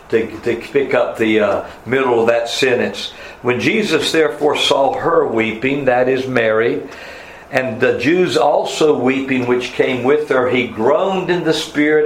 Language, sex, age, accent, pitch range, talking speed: English, male, 60-79, American, 135-180 Hz, 165 wpm